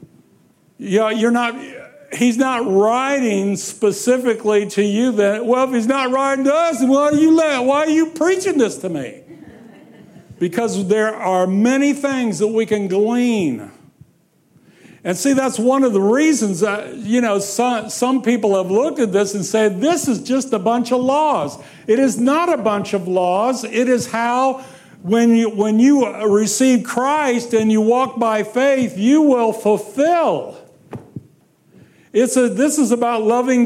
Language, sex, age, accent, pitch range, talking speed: English, male, 60-79, American, 175-250 Hz, 170 wpm